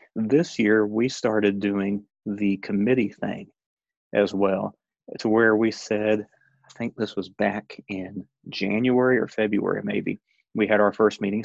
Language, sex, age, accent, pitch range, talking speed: English, male, 30-49, American, 100-120 Hz, 150 wpm